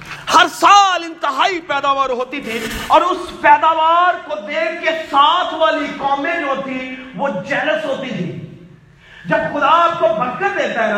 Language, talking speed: Urdu, 155 wpm